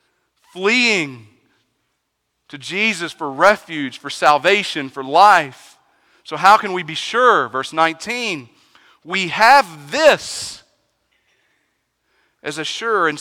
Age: 40-59